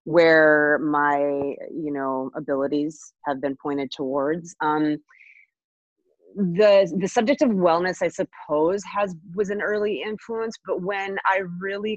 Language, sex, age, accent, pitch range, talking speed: English, female, 30-49, American, 145-210 Hz, 130 wpm